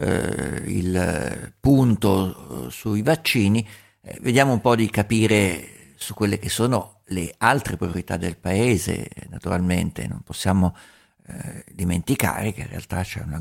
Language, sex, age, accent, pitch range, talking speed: Italian, male, 50-69, native, 90-115 Hz, 125 wpm